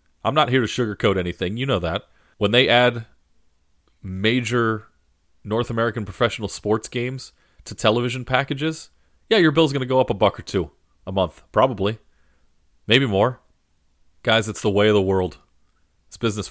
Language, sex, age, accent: English, male, 30-49, American